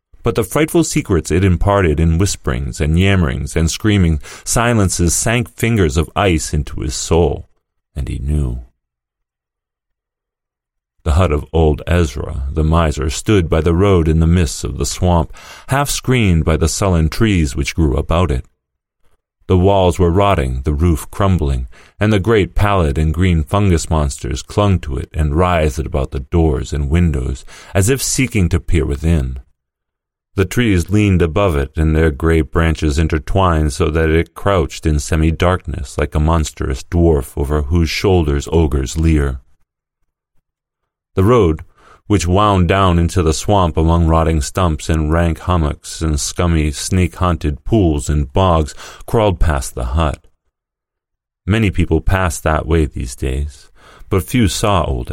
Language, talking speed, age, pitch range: English, 155 wpm, 40-59, 75-95 Hz